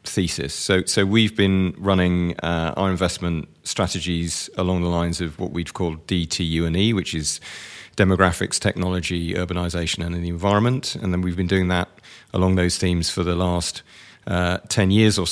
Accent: British